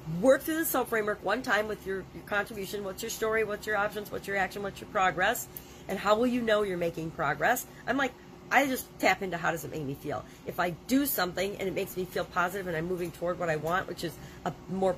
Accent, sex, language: American, female, English